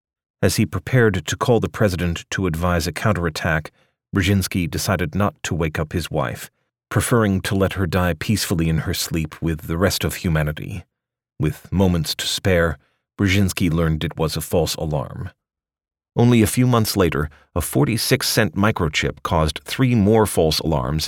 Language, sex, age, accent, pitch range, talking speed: English, male, 40-59, American, 80-100 Hz, 160 wpm